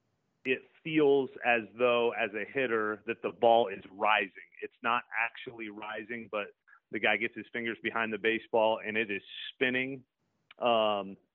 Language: English